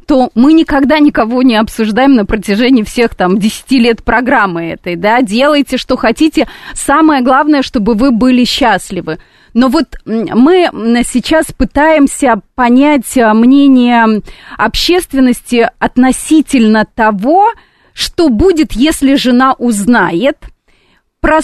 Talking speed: 110 wpm